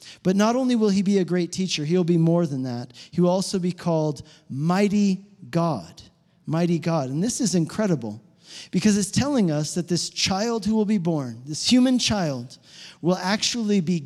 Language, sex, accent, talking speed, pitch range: English, male, American, 190 wpm, 160-215 Hz